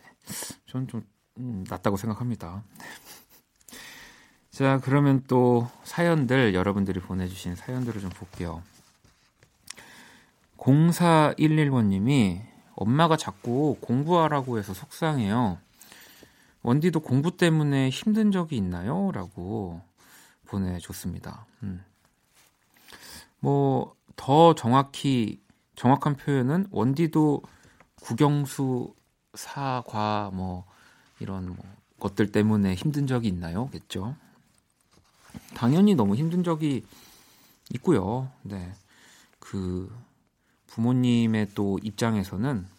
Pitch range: 100-150 Hz